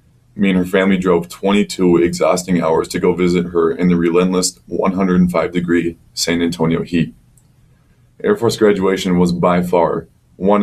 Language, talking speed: English, 150 wpm